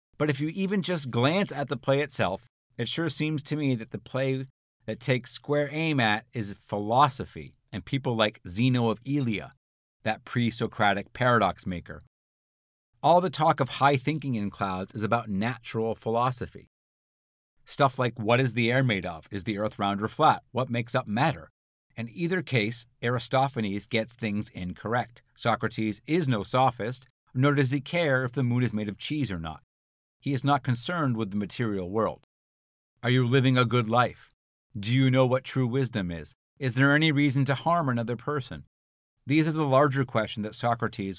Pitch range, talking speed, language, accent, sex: 105-135 Hz, 180 wpm, English, American, male